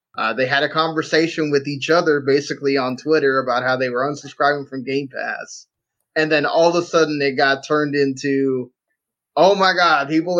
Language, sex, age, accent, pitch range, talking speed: English, male, 20-39, American, 130-155 Hz, 190 wpm